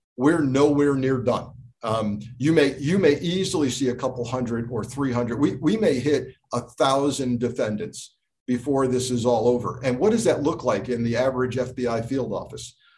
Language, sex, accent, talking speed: English, male, American, 185 wpm